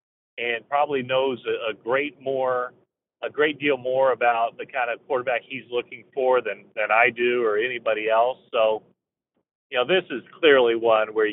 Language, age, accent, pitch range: English, 40-59, American, 120-155 Hz